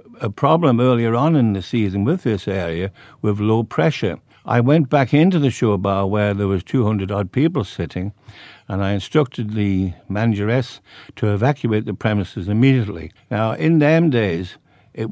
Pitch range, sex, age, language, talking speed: 95-125 Hz, male, 60-79, English, 165 wpm